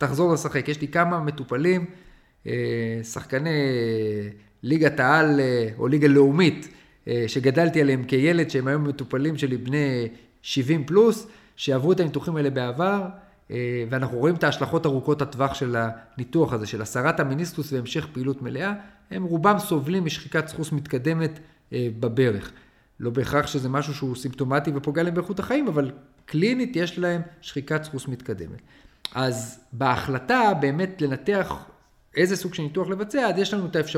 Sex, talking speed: male, 130 wpm